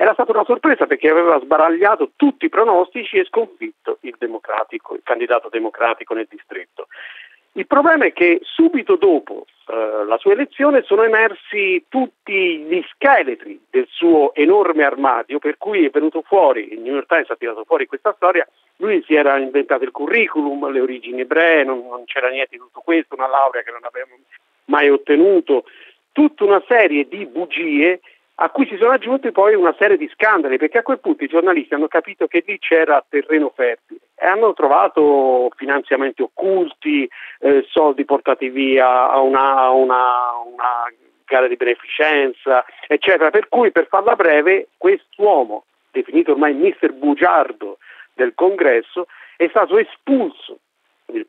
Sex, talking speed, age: male, 160 wpm, 50-69